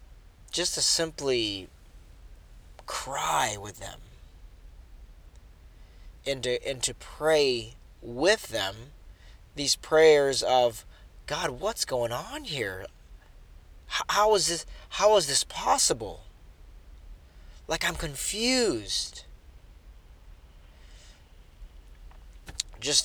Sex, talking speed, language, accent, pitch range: male, 85 wpm, English, American, 80-130 Hz